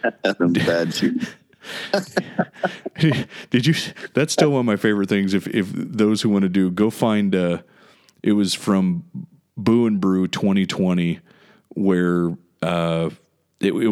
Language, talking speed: English, 140 wpm